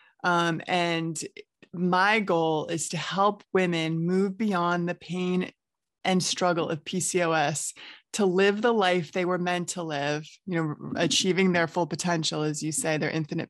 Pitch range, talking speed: 165-190 Hz, 160 wpm